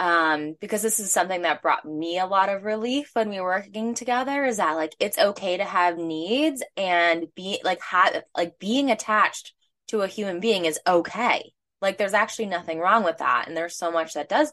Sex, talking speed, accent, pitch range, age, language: female, 210 wpm, American, 160-220 Hz, 10-29, English